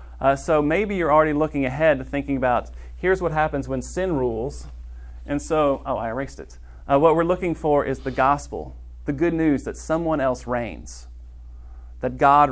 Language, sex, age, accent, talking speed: English, male, 40-59, American, 185 wpm